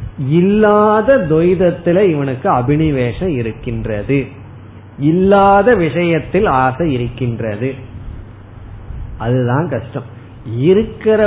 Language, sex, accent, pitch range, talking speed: Tamil, male, native, 120-170 Hz, 65 wpm